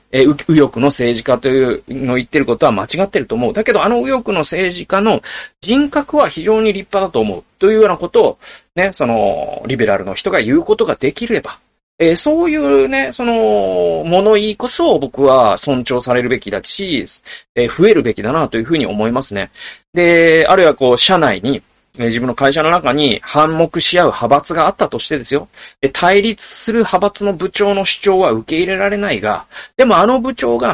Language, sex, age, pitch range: Japanese, male, 40-59, 140-225 Hz